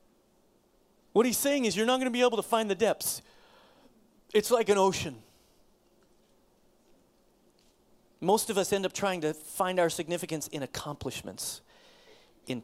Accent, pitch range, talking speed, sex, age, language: American, 155-210 Hz, 145 wpm, male, 30-49, English